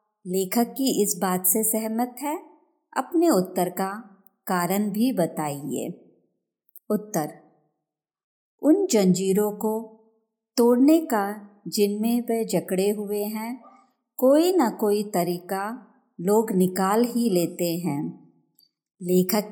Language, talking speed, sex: Hindi, 105 wpm, male